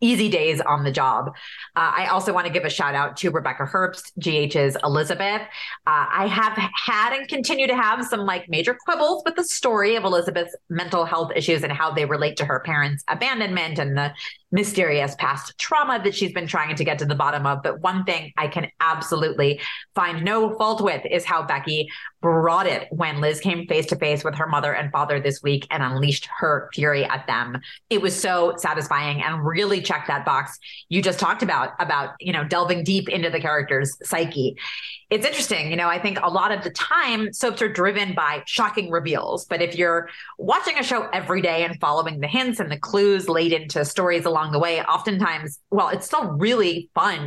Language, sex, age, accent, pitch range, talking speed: English, female, 30-49, American, 150-200 Hz, 205 wpm